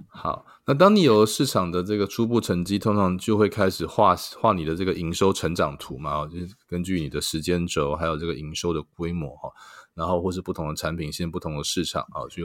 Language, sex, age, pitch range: Chinese, male, 20-39, 80-100 Hz